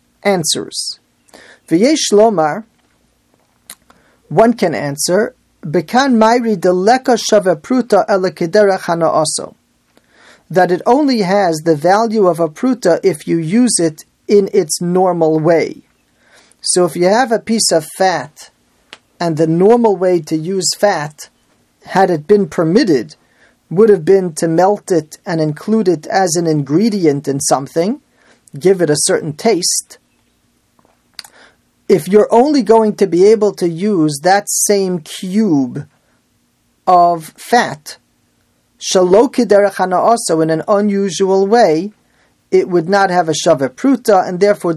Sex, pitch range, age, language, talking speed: male, 165-210 Hz, 40-59, English, 120 wpm